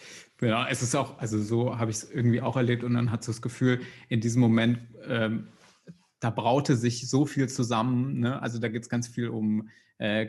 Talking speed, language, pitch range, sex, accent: 210 wpm, German, 110-135 Hz, male, German